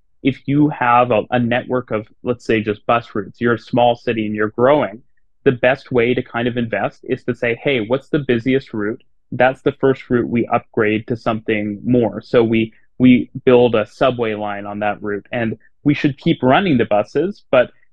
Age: 30-49